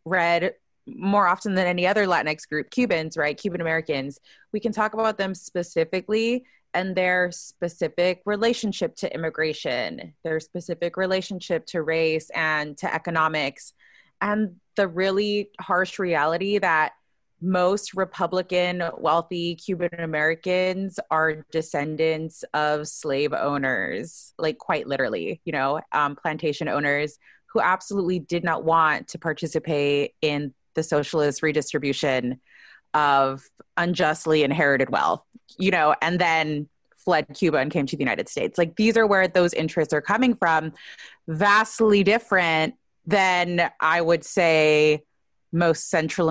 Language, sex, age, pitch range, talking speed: English, female, 20-39, 155-190 Hz, 130 wpm